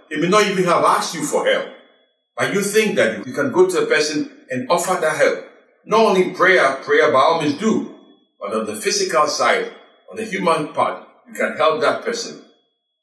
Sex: male